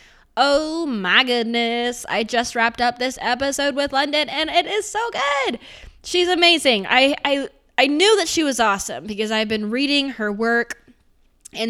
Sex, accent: female, American